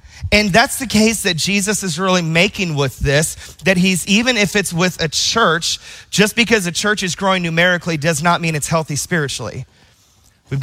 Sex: male